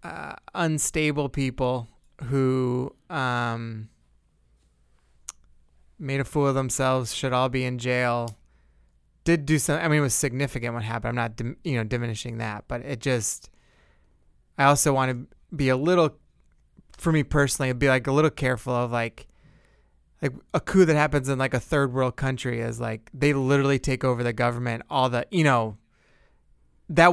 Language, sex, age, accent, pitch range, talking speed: English, male, 20-39, American, 115-145 Hz, 165 wpm